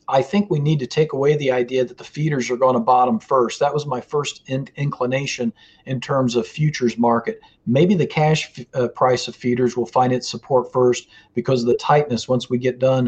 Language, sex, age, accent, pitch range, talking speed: English, male, 40-59, American, 125-150 Hz, 215 wpm